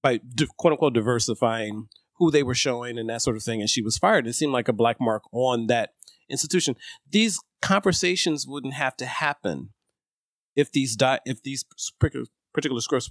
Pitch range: 115-150 Hz